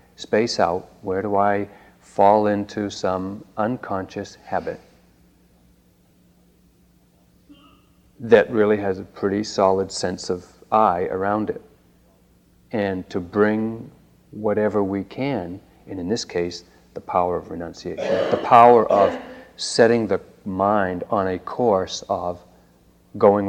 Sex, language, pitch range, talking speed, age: male, English, 90-105 Hz, 120 wpm, 40-59